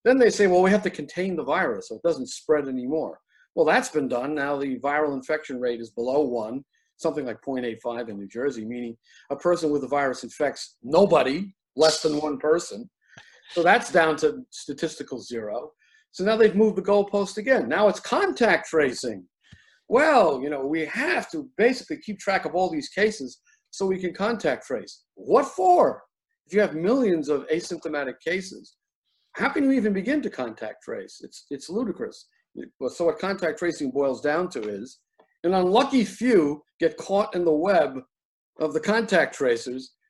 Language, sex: English, male